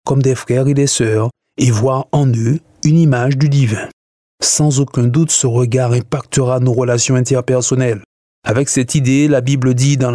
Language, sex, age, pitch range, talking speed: French, male, 20-39, 120-145 Hz, 175 wpm